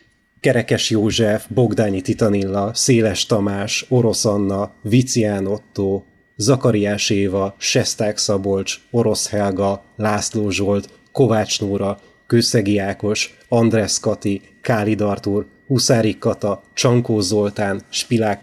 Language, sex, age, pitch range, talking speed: Hungarian, male, 30-49, 105-125 Hz, 100 wpm